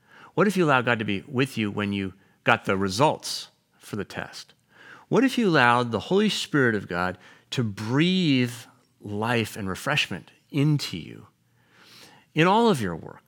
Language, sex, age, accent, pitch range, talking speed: English, male, 40-59, American, 115-160 Hz, 170 wpm